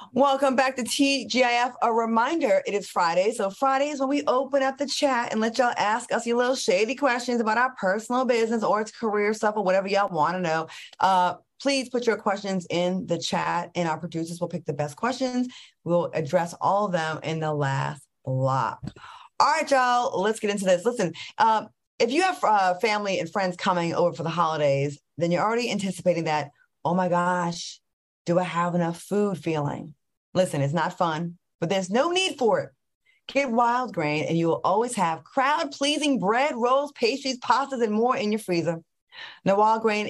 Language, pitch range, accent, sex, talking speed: English, 170-245 Hz, American, female, 200 wpm